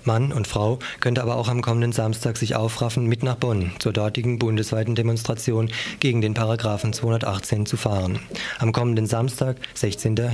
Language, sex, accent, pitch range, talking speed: German, male, German, 105-120 Hz, 165 wpm